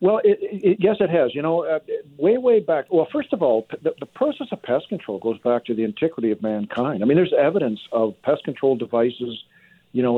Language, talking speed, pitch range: English, 220 wpm, 115-150 Hz